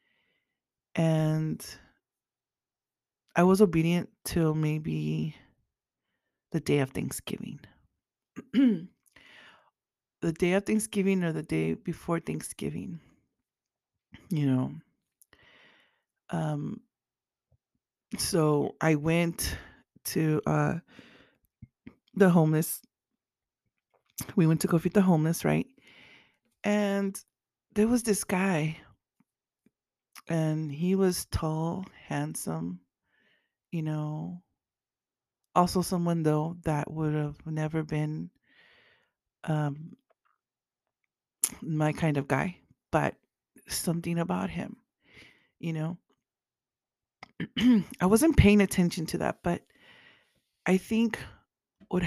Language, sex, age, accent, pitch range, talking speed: English, female, 30-49, American, 155-190 Hz, 90 wpm